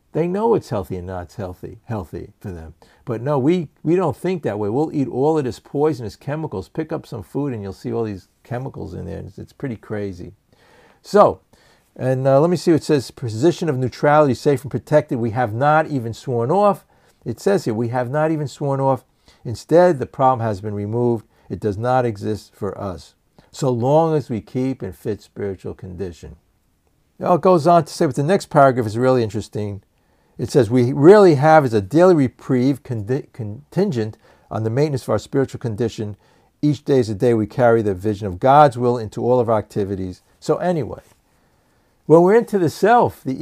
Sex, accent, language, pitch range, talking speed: male, American, English, 105-155 Hz, 205 wpm